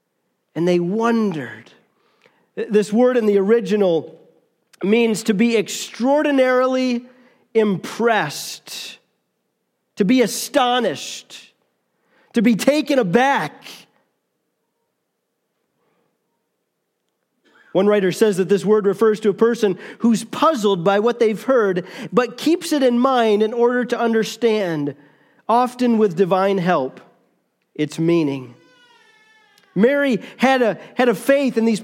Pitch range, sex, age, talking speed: 200-250 Hz, male, 40-59, 110 wpm